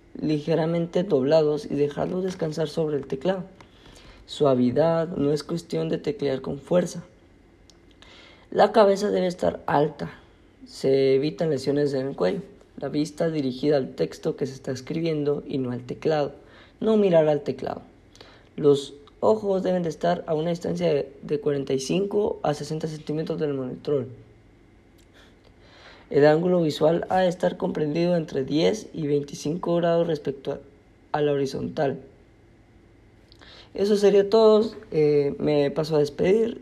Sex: female